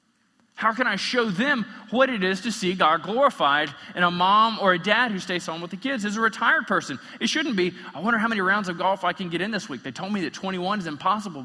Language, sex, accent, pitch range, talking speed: English, male, American, 135-220 Hz, 265 wpm